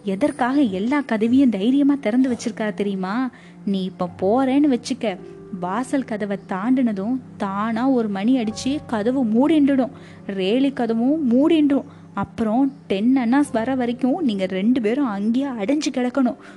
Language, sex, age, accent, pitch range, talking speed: Tamil, female, 20-39, native, 205-270 Hz, 120 wpm